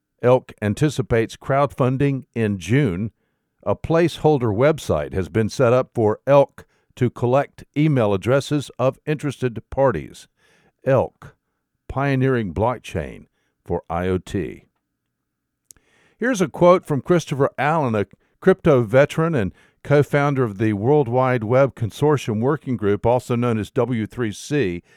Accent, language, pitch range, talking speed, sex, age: American, English, 110-145 Hz, 120 wpm, male, 60-79